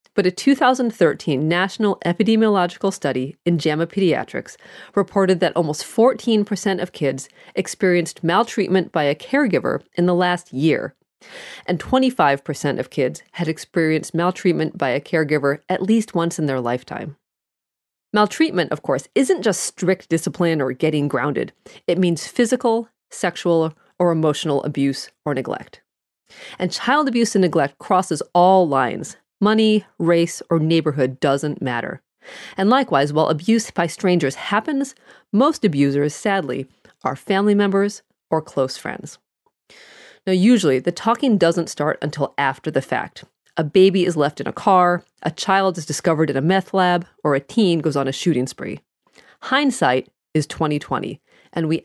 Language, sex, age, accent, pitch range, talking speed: English, female, 40-59, American, 155-200 Hz, 145 wpm